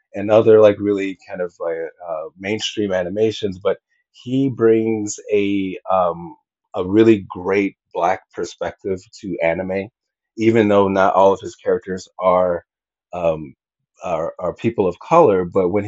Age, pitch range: 30-49, 95-125 Hz